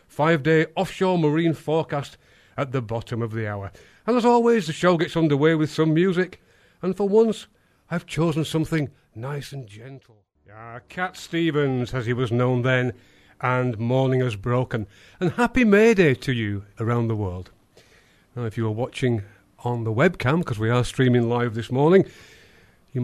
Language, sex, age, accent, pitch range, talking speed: English, male, 40-59, British, 120-165 Hz, 170 wpm